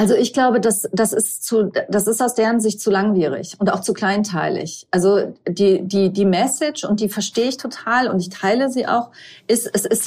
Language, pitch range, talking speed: German, 180-215 Hz, 215 wpm